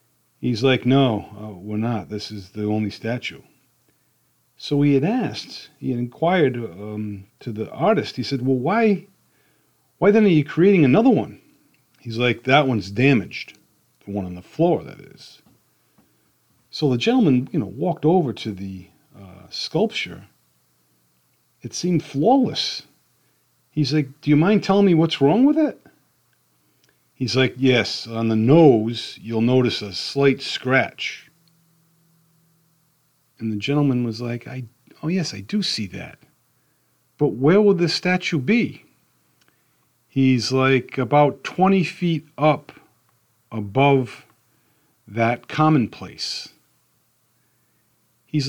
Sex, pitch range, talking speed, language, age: male, 115-165 Hz, 135 wpm, English, 40-59